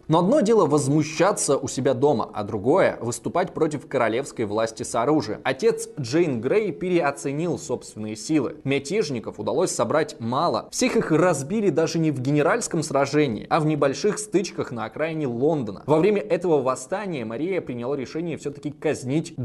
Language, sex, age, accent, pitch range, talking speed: Russian, male, 20-39, native, 125-175 Hz, 150 wpm